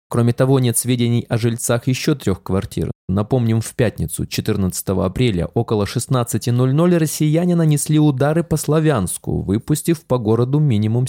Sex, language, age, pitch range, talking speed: male, Russian, 20-39, 110-155 Hz, 135 wpm